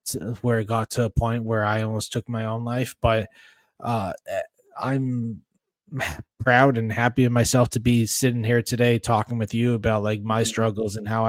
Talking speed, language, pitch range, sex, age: 185 wpm, English, 115-130 Hz, male, 20-39